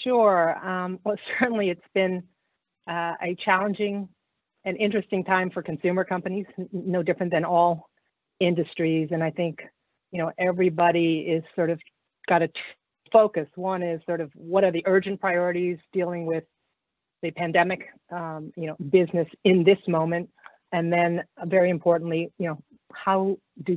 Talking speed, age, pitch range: 160 wpm, 40-59, 160-185 Hz